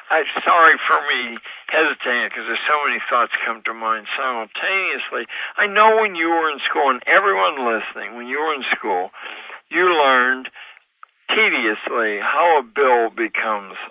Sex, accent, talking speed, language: male, American, 150 wpm, English